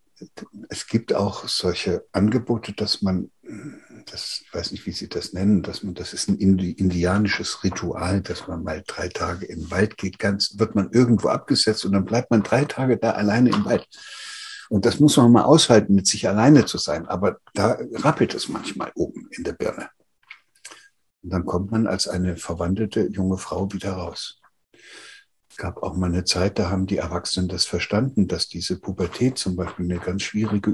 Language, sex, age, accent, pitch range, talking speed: German, male, 60-79, German, 90-110 Hz, 185 wpm